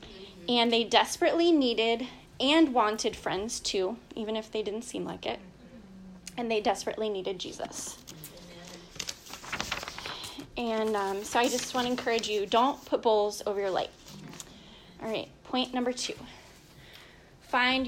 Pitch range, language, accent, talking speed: 205-250 Hz, English, American, 140 wpm